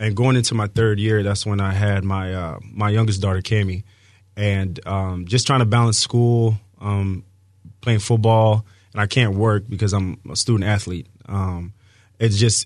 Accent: American